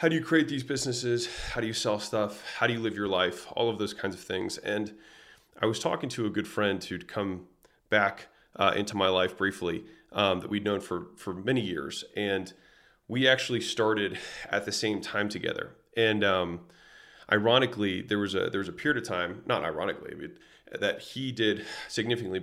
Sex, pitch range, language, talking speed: male, 100-120 Hz, English, 200 wpm